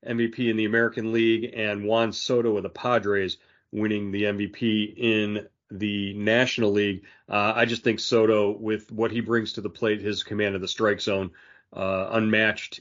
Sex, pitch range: male, 100-115 Hz